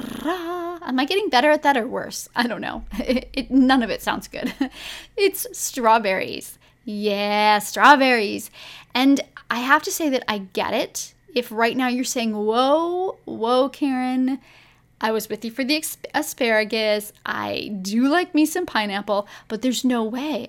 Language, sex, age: English, female, 10-29